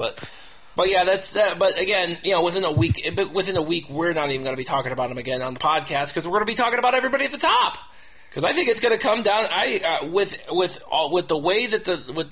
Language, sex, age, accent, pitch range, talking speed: English, male, 30-49, American, 155-200 Hz, 285 wpm